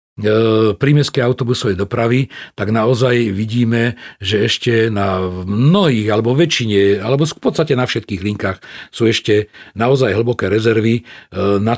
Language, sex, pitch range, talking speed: Slovak, male, 105-135 Hz, 120 wpm